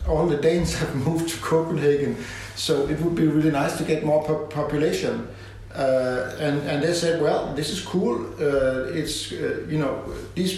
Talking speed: 180 wpm